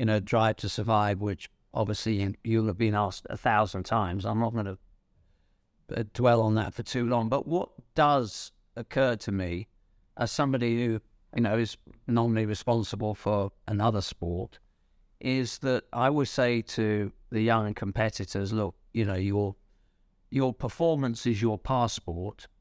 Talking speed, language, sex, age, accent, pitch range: 155 wpm, English, male, 50-69, British, 105-135 Hz